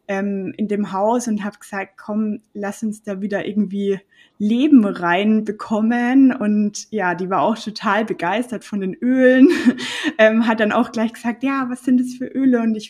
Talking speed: 170 wpm